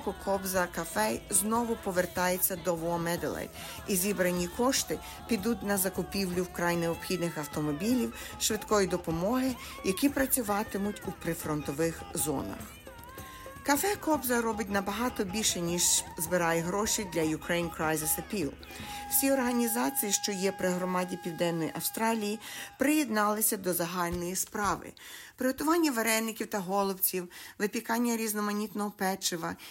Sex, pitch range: female, 170-230 Hz